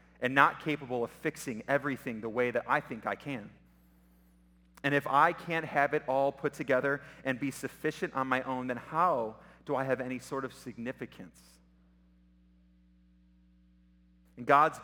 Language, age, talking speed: English, 30-49, 160 wpm